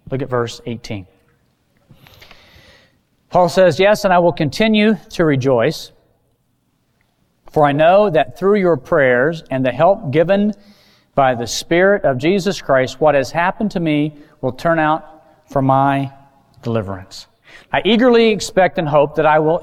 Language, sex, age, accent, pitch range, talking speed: English, male, 40-59, American, 125-185 Hz, 150 wpm